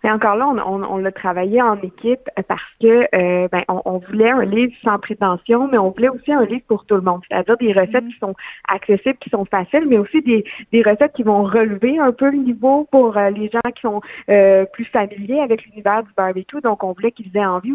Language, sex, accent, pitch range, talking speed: French, female, Canadian, 195-245 Hz, 240 wpm